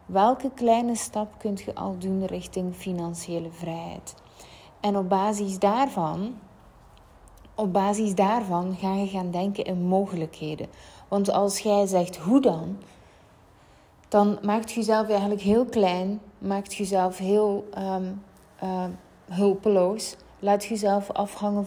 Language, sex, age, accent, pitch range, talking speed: Dutch, female, 30-49, Dutch, 180-205 Hz, 120 wpm